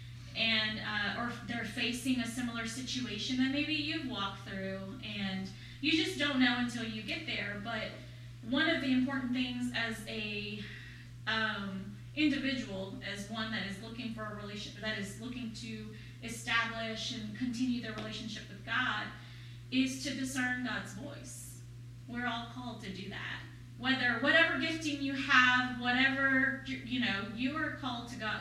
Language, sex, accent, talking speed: English, female, American, 160 wpm